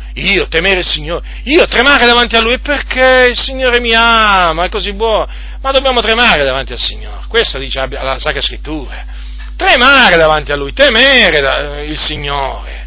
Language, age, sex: Italian, 40-59, male